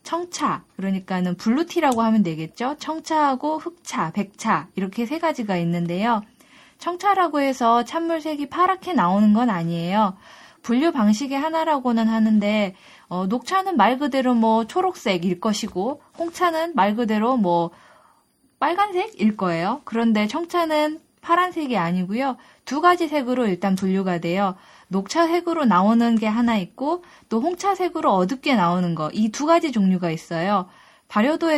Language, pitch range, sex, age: Korean, 195-295 Hz, female, 10-29